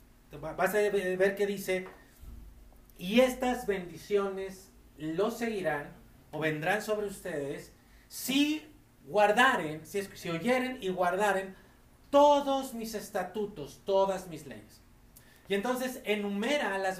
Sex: male